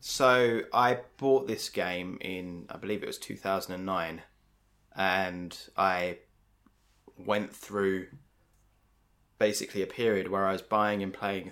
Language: English